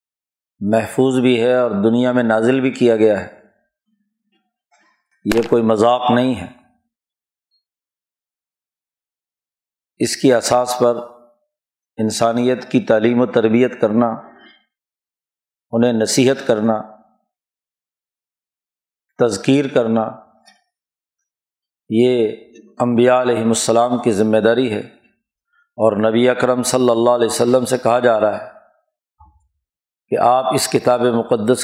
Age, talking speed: 50-69, 105 wpm